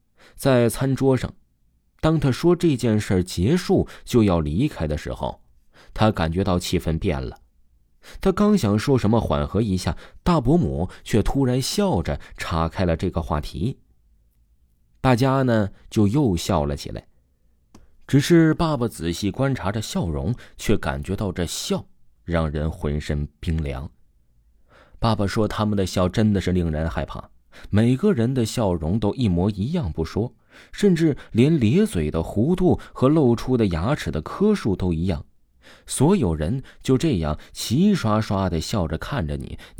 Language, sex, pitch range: Chinese, male, 75-115 Hz